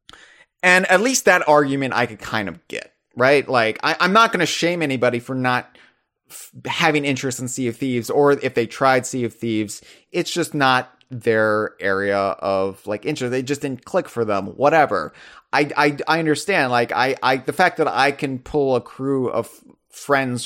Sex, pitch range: male, 115-145 Hz